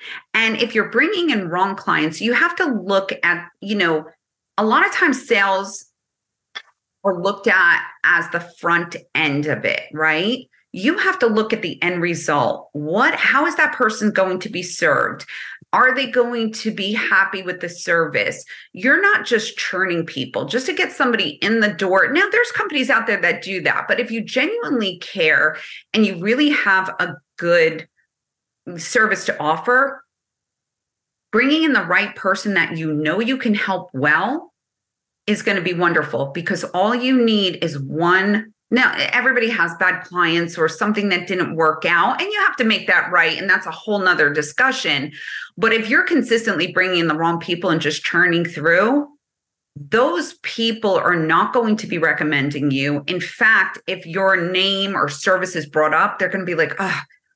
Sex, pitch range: female, 170-230 Hz